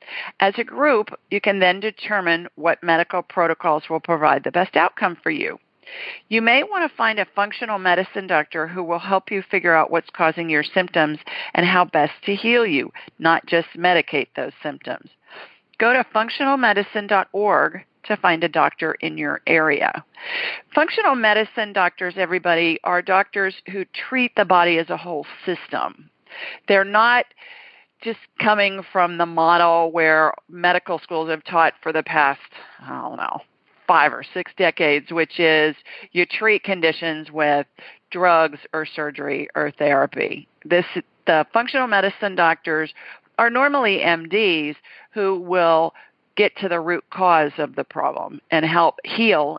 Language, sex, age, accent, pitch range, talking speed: English, female, 50-69, American, 165-210 Hz, 150 wpm